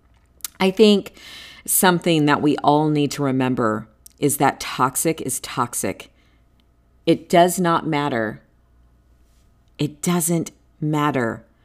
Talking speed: 110 wpm